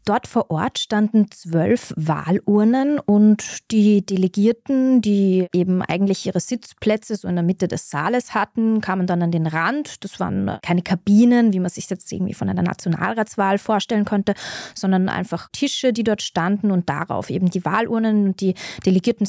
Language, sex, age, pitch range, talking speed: German, female, 20-39, 180-220 Hz, 170 wpm